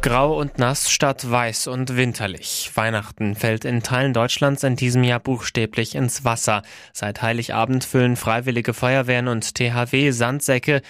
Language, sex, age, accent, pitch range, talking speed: German, male, 20-39, German, 110-125 Hz, 145 wpm